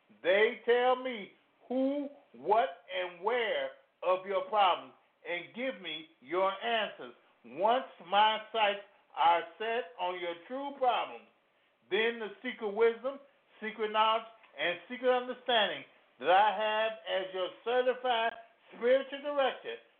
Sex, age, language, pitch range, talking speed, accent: male, 50-69, English, 190-260 Hz, 125 wpm, American